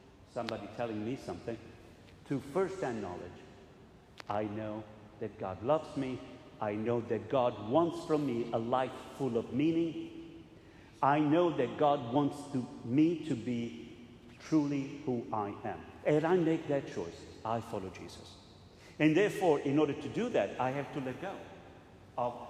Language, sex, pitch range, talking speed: English, male, 105-160 Hz, 155 wpm